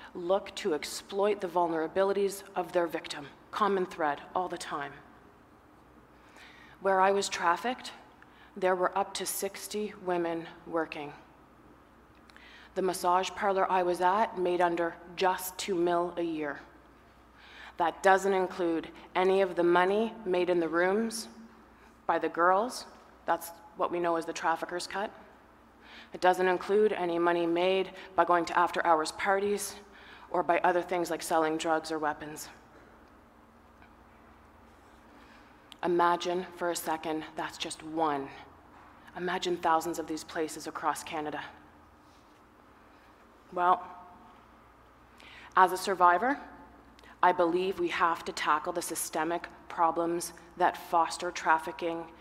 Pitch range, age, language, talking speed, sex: 165-185 Hz, 30-49, English, 125 wpm, female